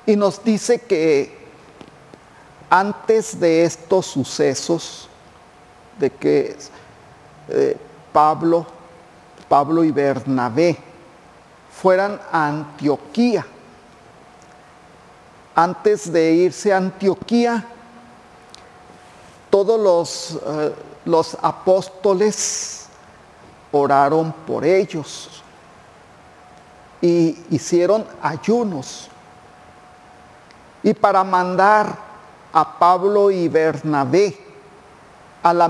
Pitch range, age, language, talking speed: 165-210 Hz, 50-69, Spanish, 70 wpm